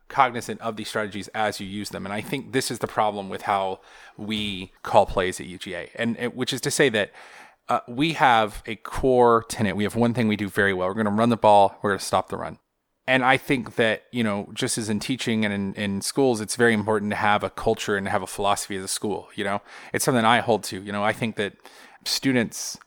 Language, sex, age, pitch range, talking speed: English, male, 30-49, 100-120 Hz, 250 wpm